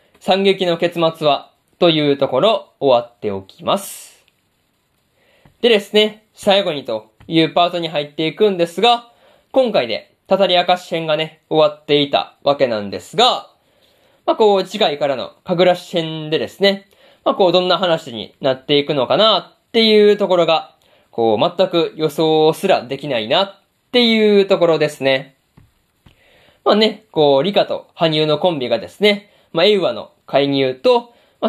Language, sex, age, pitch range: Japanese, male, 20-39, 155-205 Hz